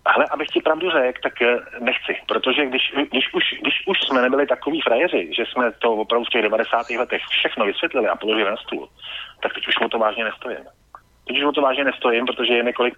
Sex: male